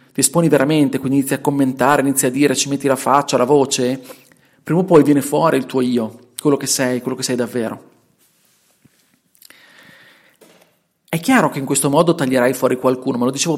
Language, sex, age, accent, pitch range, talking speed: Italian, male, 30-49, native, 135-185 Hz, 190 wpm